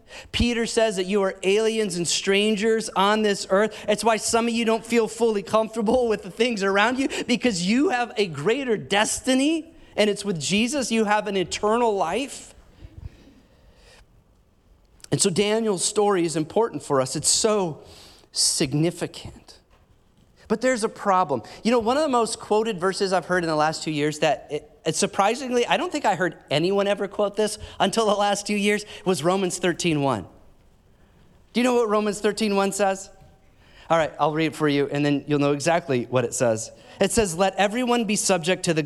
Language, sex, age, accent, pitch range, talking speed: English, male, 30-49, American, 155-220 Hz, 185 wpm